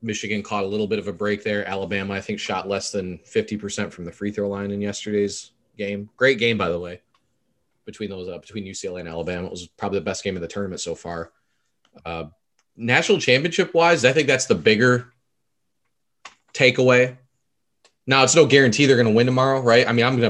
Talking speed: 205 wpm